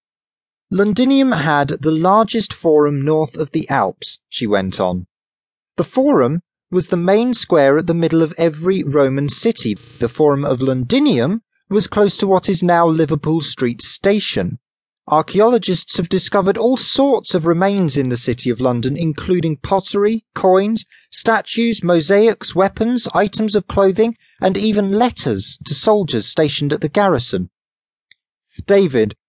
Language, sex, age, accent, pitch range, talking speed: English, male, 30-49, British, 125-205 Hz, 140 wpm